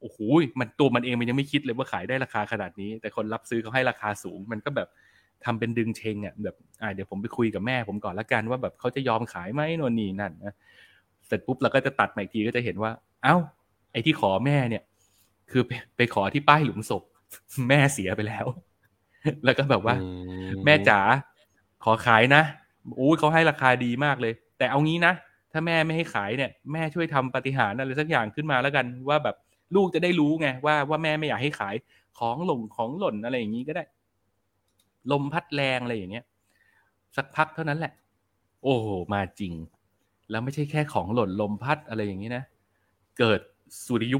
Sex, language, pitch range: male, Thai, 105-140 Hz